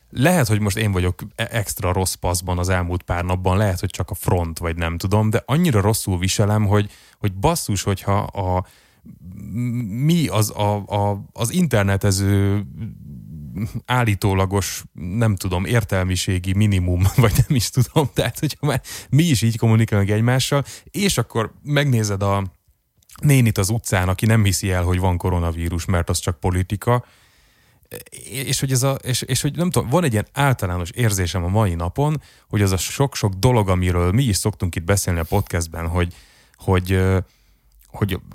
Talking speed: 160 wpm